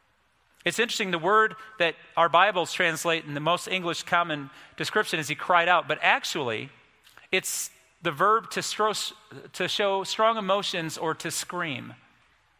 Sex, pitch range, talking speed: male, 150-190 Hz, 145 wpm